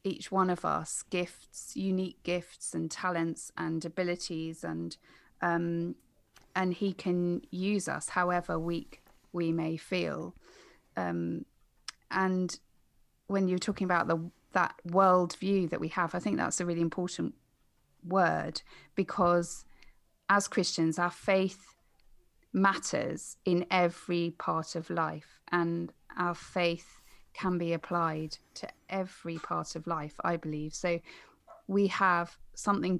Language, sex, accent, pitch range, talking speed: English, female, British, 165-185 Hz, 130 wpm